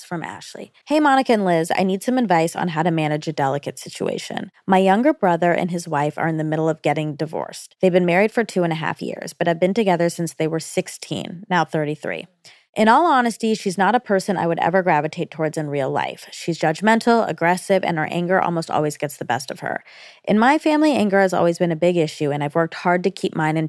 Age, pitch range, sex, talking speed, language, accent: 20-39, 155-195 Hz, female, 240 wpm, English, American